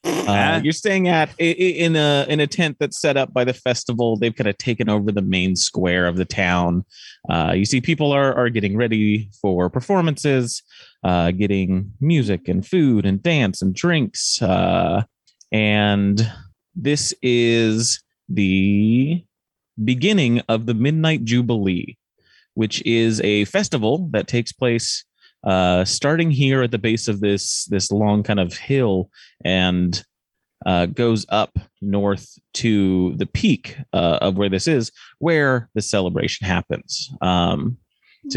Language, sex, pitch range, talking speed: English, male, 100-130 Hz, 145 wpm